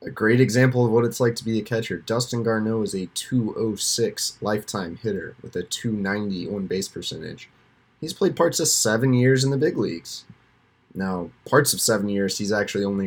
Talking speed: 195 wpm